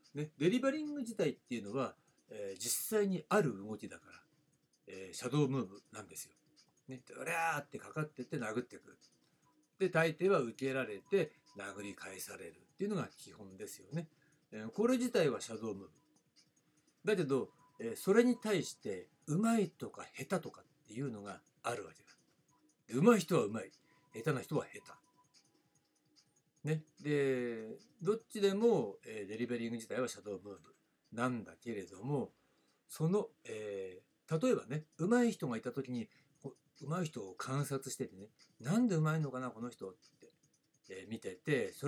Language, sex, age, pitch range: Japanese, male, 60-79, 125-195 Hz